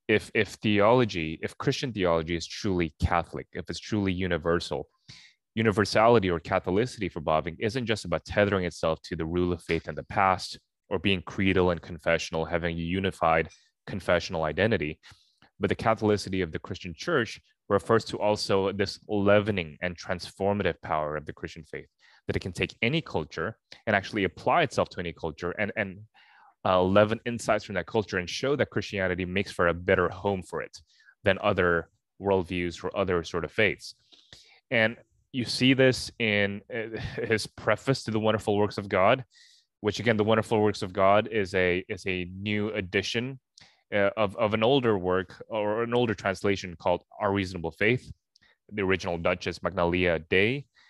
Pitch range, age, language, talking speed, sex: 90-110 Hz, 20-39, English, 170 wpm, male